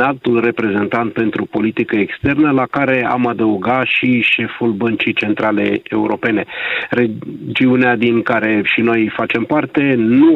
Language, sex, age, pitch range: Romanian, male, 40-59, 105-130 Hz